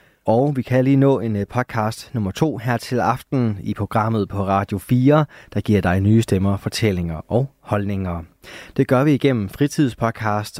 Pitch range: 100-125 Hz